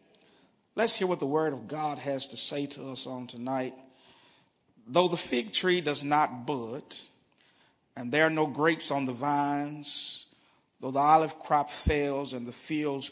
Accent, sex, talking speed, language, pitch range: American, male, 170 wpm, English, 140-175 Hz